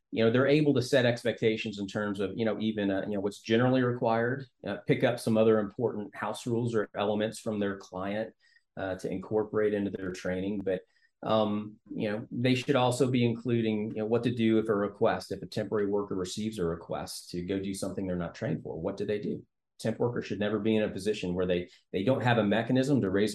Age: 30-49